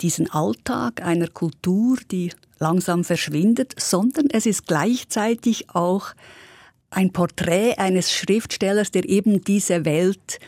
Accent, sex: Swiss, female